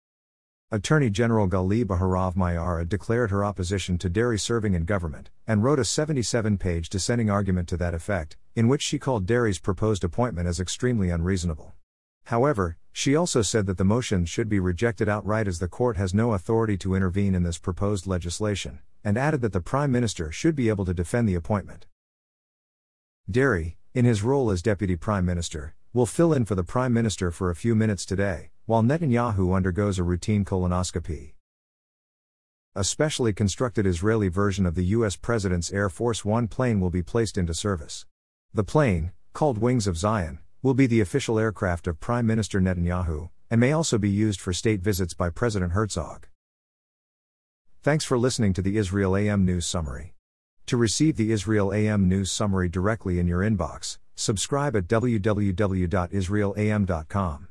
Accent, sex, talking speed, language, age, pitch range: American, male, 170 wpm, English, 50-69, 90-115 Hz